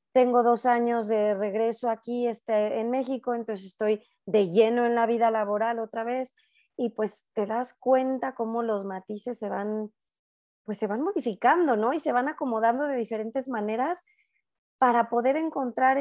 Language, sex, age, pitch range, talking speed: Spanish, female, 20-39, 200-255 Hz, 165 wpm